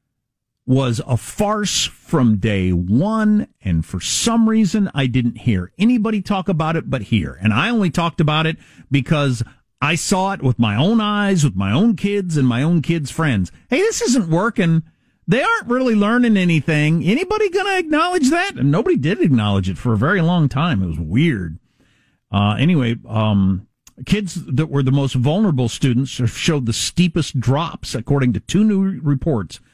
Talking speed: 180 wpm